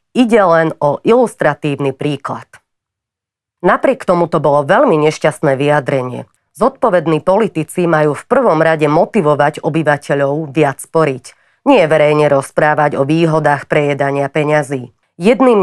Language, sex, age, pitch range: Slovak, female, 30-49, 140-180 Hz